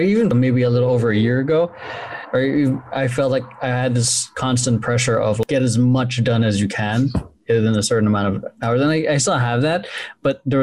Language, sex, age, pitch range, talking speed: English, male, 20-39, 115-130 Hz, 215 wpm